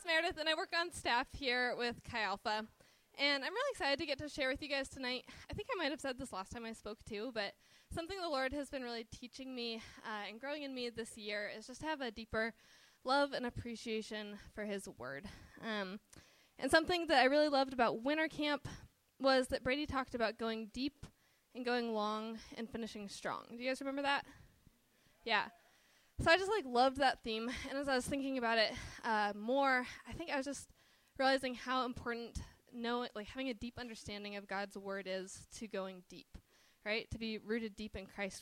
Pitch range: 220-280 Hz